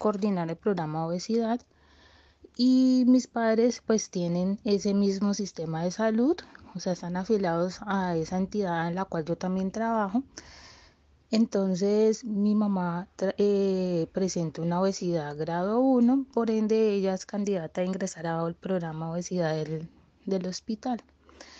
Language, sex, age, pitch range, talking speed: Spanish, female, 20-39, 180-215 Hz, 145 wpm